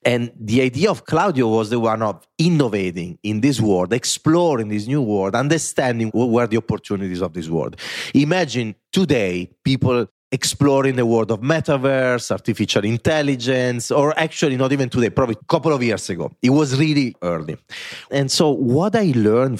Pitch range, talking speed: 110-155 Hz, 170 wpm